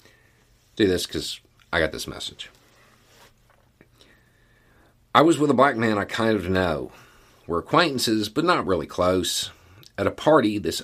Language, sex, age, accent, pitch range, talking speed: English, male, 40-59, American, 85-115 Hz, 150 wpm